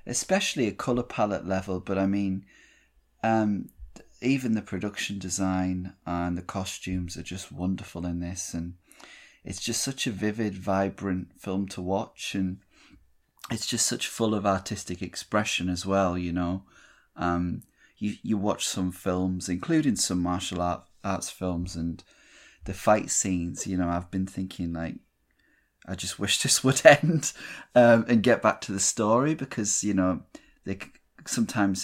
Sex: male